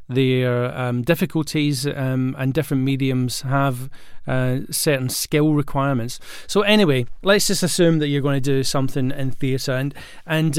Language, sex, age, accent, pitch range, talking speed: English, male, 30-49, British, 125-150 Hz, 155 wpm